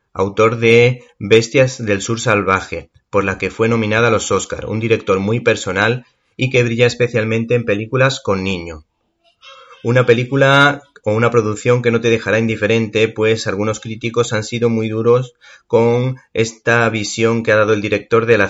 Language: Spanish